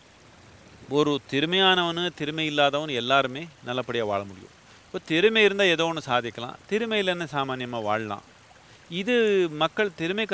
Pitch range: 130-180 Hz